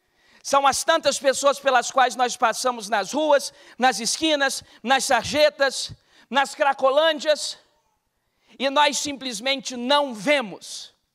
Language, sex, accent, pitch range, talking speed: Portuguese, male, Brazilian, 255-345 Hz, 115 wpm